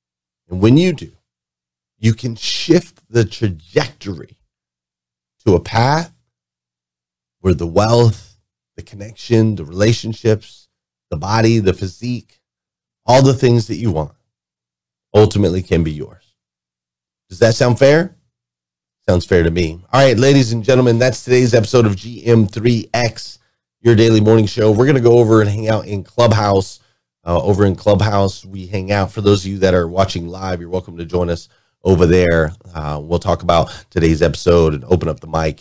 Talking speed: 165 wpm